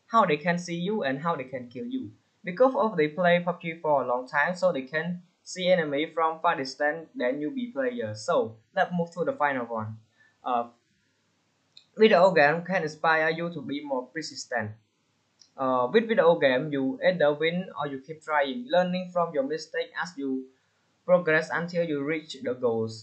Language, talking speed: English, 190 wpm